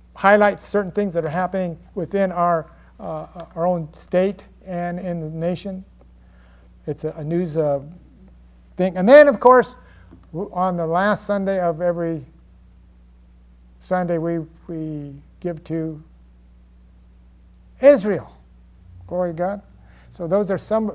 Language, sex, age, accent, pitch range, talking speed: English, male, 60-79, American, 135-205 Hz, 130 wpm